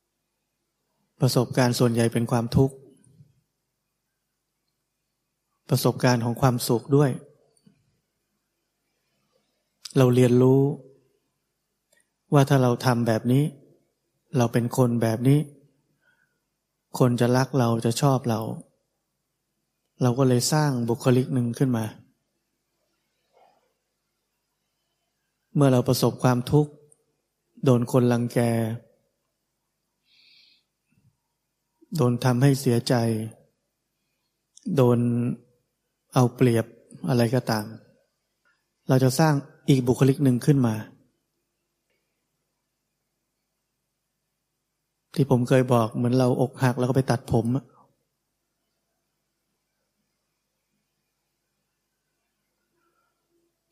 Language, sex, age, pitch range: Thai, male, 20-39, 120-140 Hz